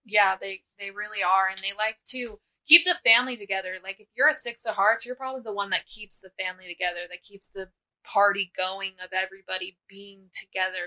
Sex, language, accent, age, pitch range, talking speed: female, English, American, 20-39, 190-235 Hz, 210 wpm